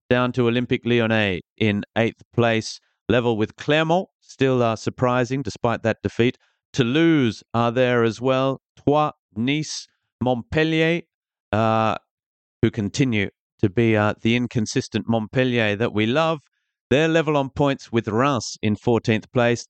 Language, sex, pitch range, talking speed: English, male, 110-130 Hz, 135 wpm